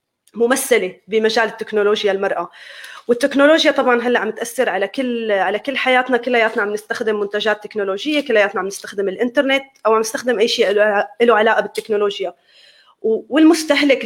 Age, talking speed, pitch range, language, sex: 20-39, 140 wpm, 210-255 Hz, Arabic, female